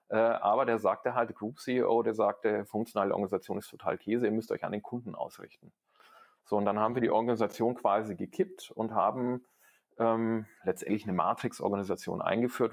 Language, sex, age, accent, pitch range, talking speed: German, male, 40-59, German, 105-125 Hz, 170 wpm